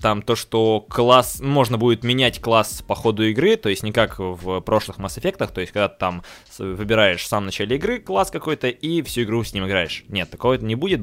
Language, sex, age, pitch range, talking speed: Russian, male, 20-39, 105-140 Hz, 220 wpm